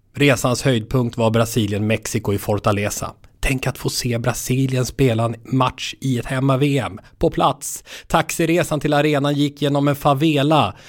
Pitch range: 105-140 Hz